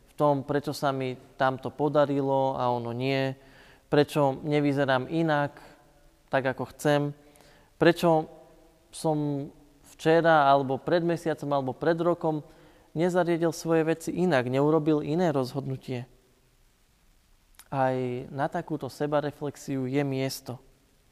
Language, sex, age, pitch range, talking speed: Slovak, male, 20-39, 135-160 Hz, 105 wpm